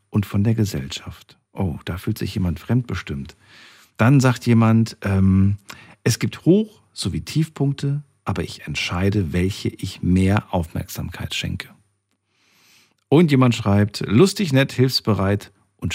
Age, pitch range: 50-69, 100-135 Hz